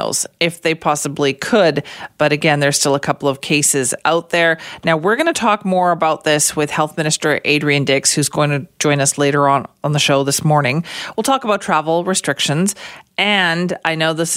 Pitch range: 145-180 Hz